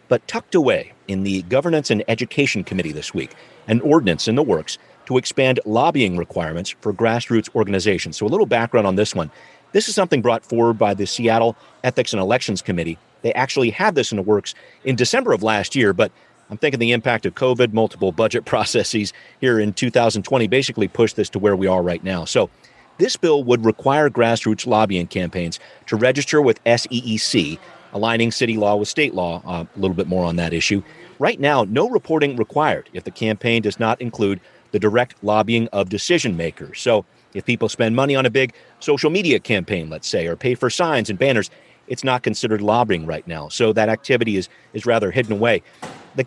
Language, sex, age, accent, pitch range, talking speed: English, male, 40-59, American, 100-125 Hz, 200 wpm